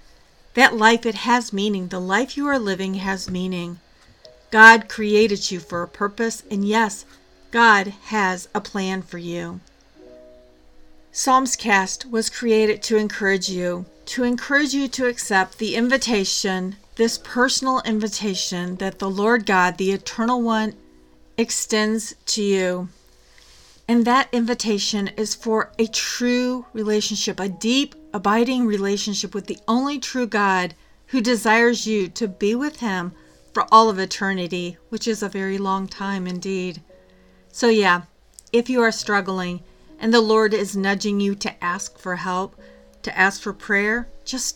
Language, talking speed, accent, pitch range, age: English, 145 wpm, American, 185-230 Hz, 40-59